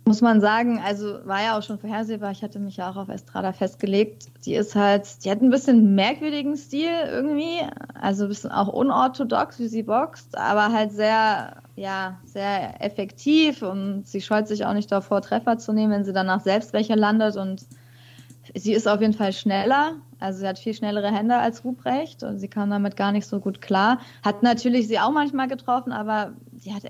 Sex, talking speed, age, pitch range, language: female, 200 wpm, 20-39, 195-225 Hz, German